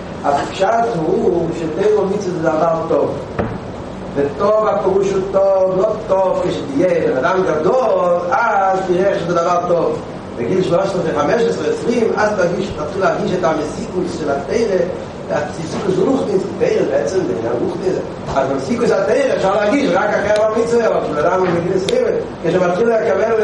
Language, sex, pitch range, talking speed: Hebrew, male, 185-240 Hz, 160 wpm